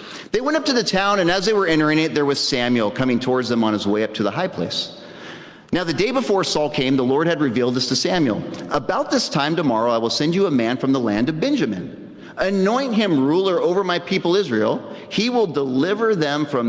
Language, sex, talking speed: English, male, 235 wpm